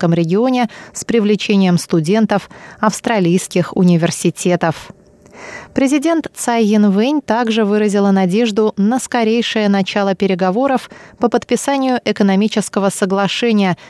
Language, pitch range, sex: Russian, 185-230 Hz, female